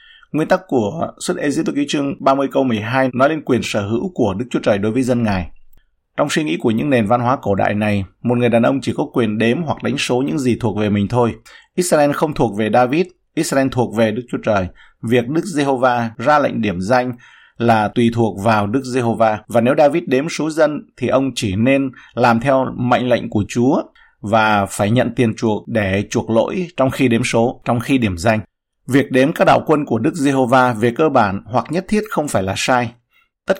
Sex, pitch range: male, 110-135 Hz